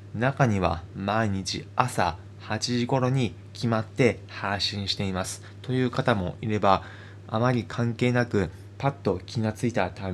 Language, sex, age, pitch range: Japanese, male, 20-39, 95-120 Hz